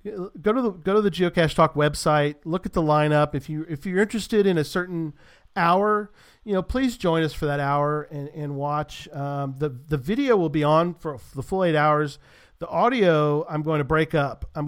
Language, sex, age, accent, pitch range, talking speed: English, male, 40-59, American, 135-160 Hz, 215 wpm